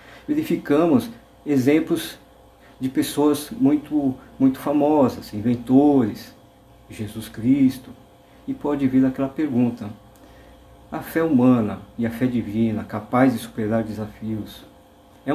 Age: 50-69